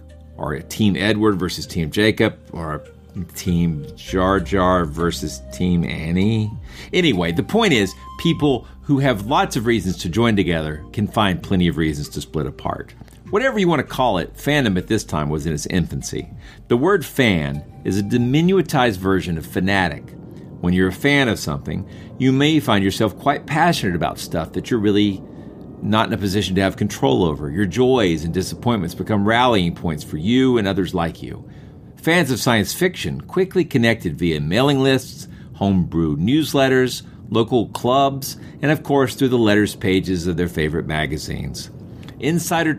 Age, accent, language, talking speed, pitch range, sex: 50-69, American, English, 170 wpm, 85-130 Hz, male